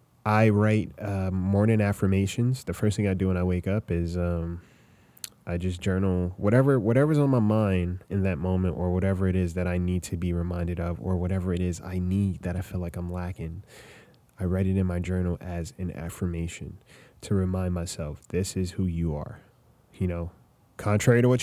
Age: 20-39